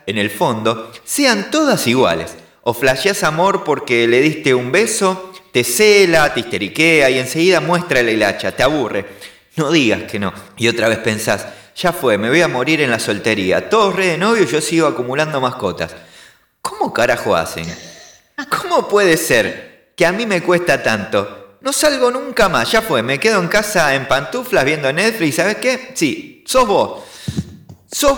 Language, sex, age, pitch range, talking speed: Spanish, male, 30-49, 130-205 Hz, 175 wpm